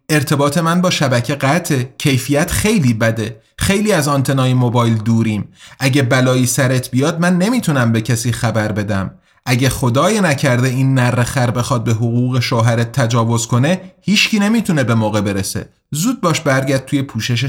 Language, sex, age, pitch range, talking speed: Persian, male, 30-49, 120-160 Hz, 150 wpm